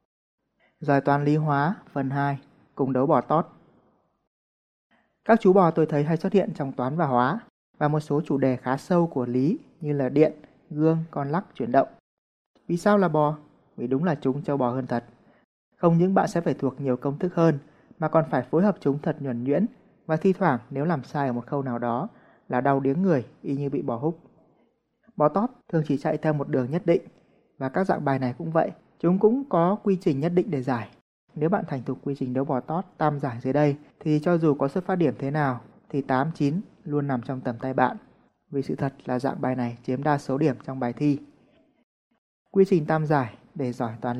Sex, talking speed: male, 230 wpm